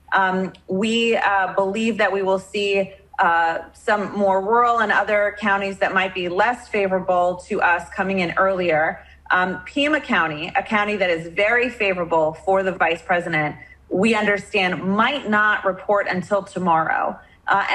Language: English